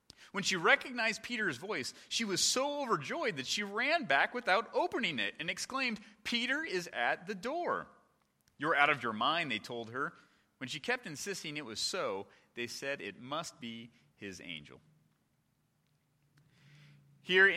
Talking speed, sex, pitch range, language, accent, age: 155 wpm, male, 115-165 Hz, English, American, 30-49